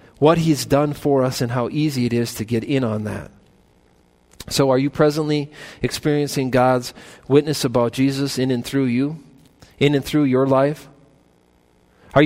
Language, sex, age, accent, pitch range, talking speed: English, male, 40-59, American, 120-150 Hz, 165 wpm